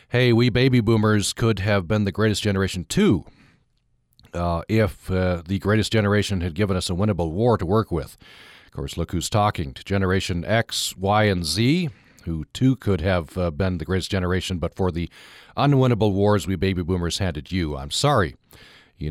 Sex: male